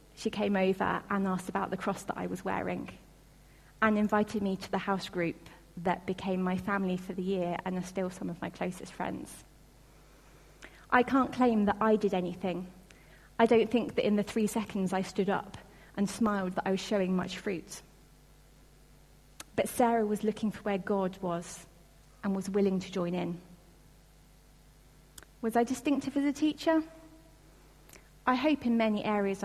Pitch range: 190-235 Hz